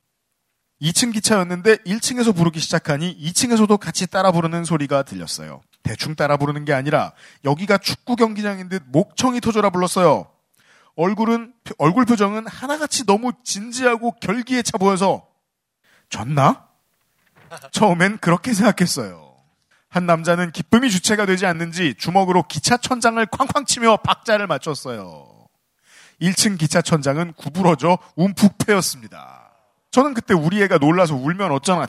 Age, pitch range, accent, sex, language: 40-59, 145-210 Hz, native, male, Korean